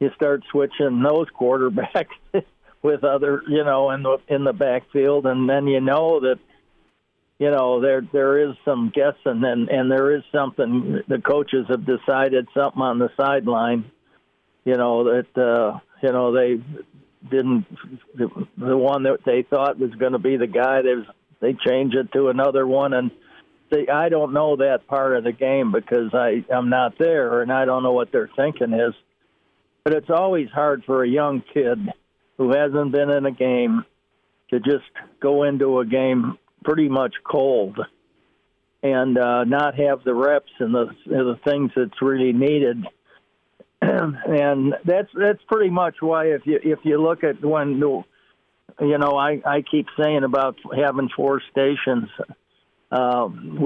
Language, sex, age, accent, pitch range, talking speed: English, male, 60-79, American, 125-145 Hz, 170 wpm